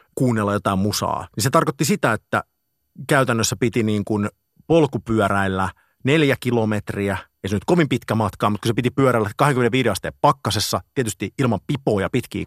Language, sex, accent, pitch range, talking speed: Finnish, male, native, 100-140 Hz, 160 wpm